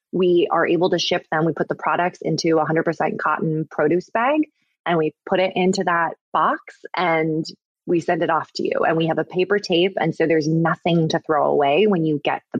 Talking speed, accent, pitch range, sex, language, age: 225 wpm, American, 155-185 Hz, female, English, 20-39